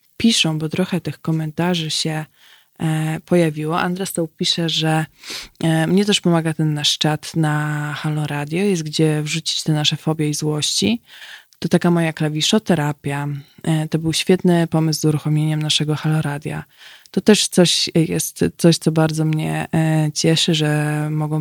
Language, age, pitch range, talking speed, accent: Polish, 20-39, 155-170 Hz, 140 wpm, native